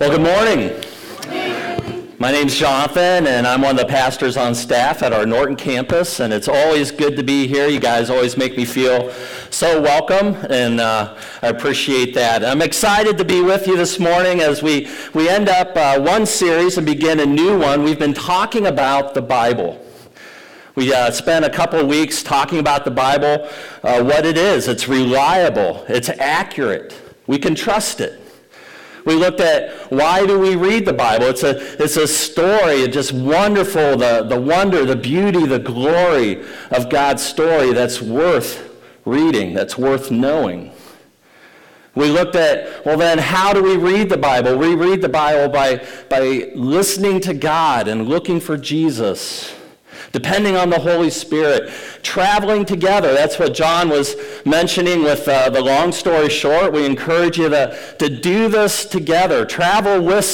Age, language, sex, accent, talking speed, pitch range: 50-69, English, male, American, 170 wpm, 135-185 Hz